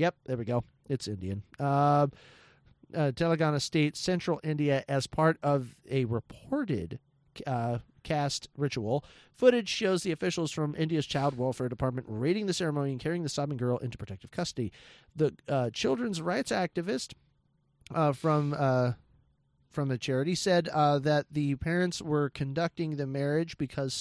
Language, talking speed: English, 150 wpm